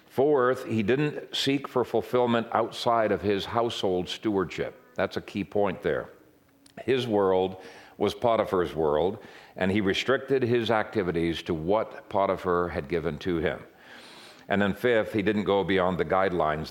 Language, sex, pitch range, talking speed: English, male, 90-115 Hz, 150 wpm